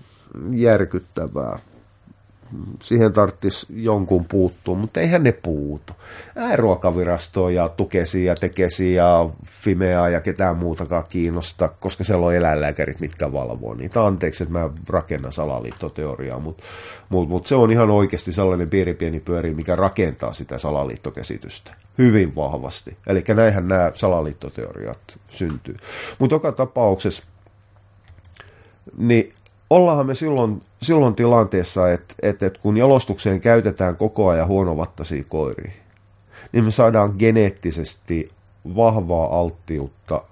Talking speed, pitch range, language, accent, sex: 120 wpm, 85-105 Hz, Finnish, native, male